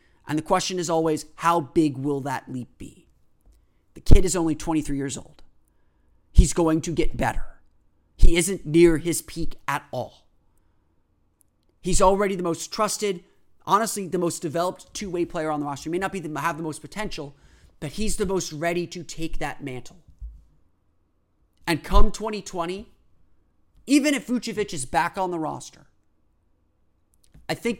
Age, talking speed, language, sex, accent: 30-49, 160 wpm, English, male, American